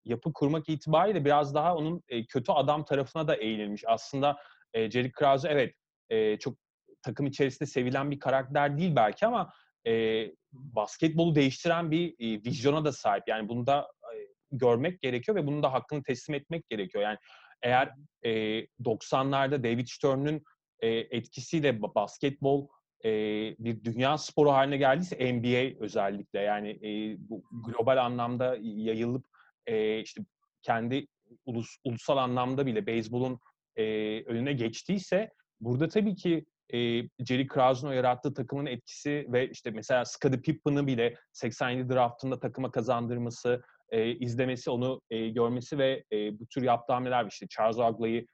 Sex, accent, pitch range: male, native, 115-145 Hz